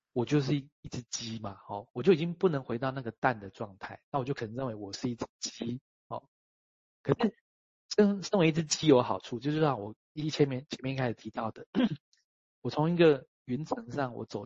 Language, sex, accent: Chinese, male, native